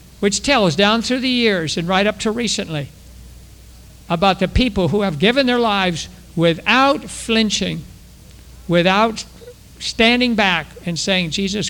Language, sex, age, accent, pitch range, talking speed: English, male, 60-79, American, 180-250 Hz, 140 wpm